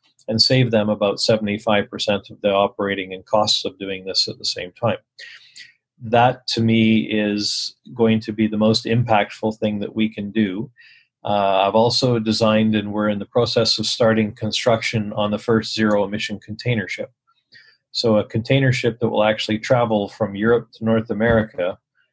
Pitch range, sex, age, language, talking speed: 105-115 Hz, male, 40-59, English, 170 wpm